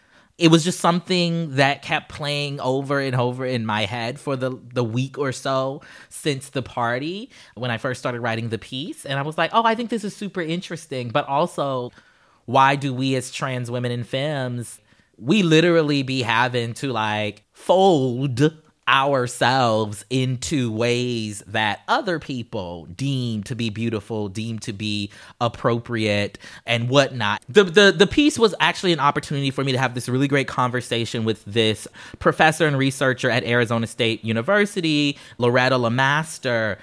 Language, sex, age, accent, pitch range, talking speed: English, male, 20-39, American, 120-150 Hz, 165 wpm